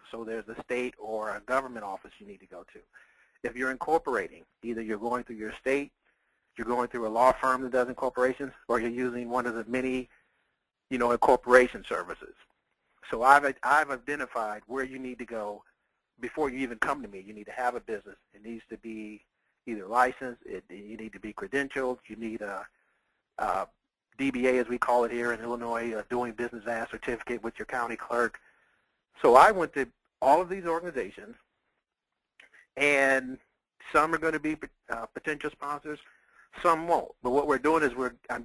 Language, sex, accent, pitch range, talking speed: English, male, American, 115-135 Hz, 190 wpm